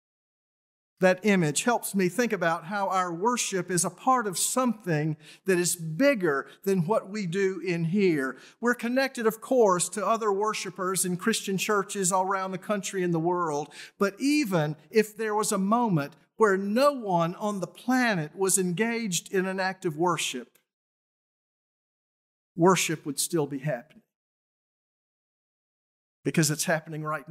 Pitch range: 165-210 Hz